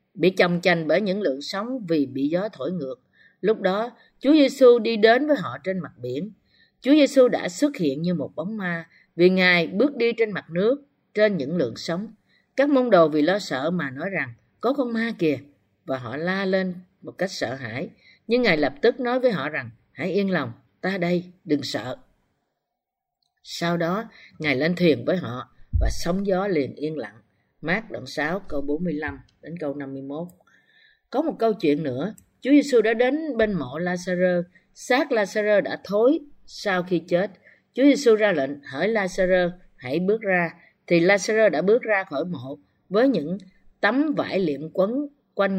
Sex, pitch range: female, 160-225 Hz